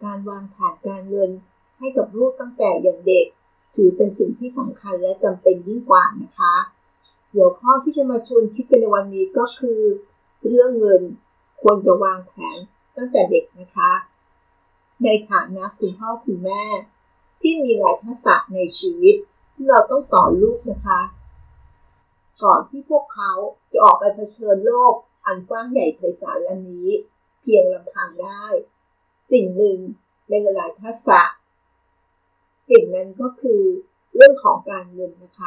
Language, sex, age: Thai, female, 50-69